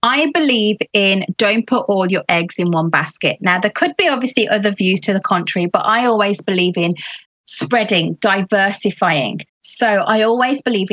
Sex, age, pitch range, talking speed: female, 20-39, 190-225 Hz, 175 wpm